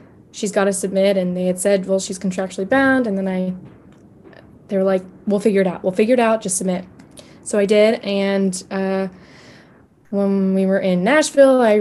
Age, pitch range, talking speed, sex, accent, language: 20-39, 190-210 Hz, 200 wpm, female, American, English